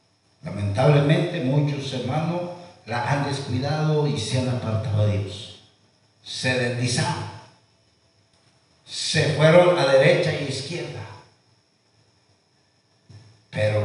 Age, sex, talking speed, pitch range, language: 50-69, male, 105 wpm, 110-135 Hz, Spanish